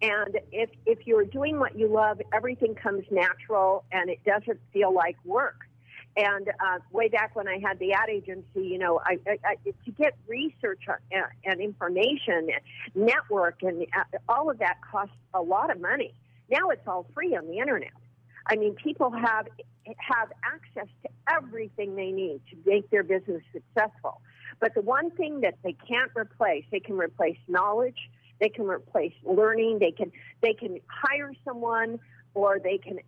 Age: 50-69